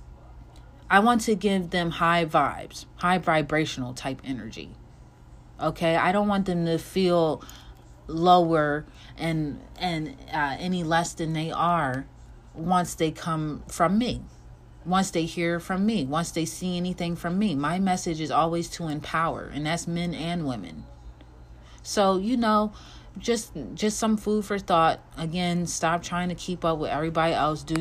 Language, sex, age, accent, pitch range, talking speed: English, female, 30-49, American, 145-175 Hz, 160 wpm